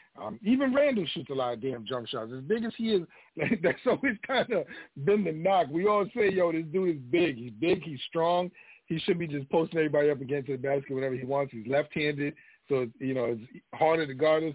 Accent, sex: American, male